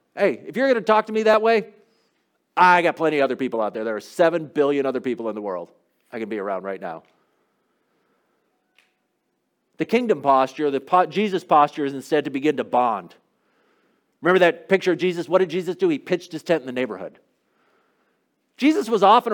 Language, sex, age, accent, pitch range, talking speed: English, male, 50-69, American, 140-190 Hz, 200 wpm